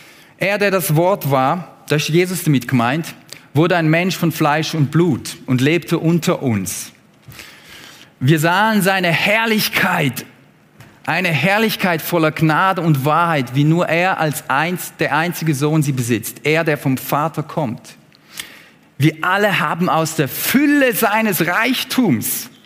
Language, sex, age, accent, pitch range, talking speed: German, male, 40-59, German, 170-235 Hz, 140 wpm